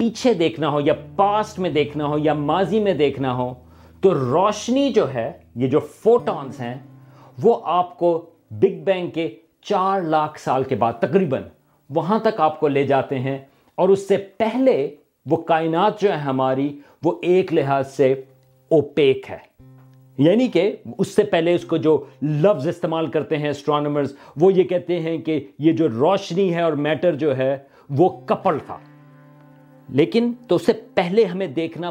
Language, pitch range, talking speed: Urdu, 135-180 Hz, 170 wpm